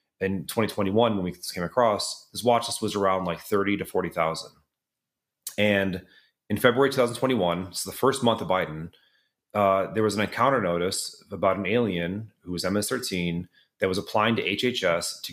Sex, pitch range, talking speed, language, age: male, 90-110 Hz, 170 wpm, English, 30-49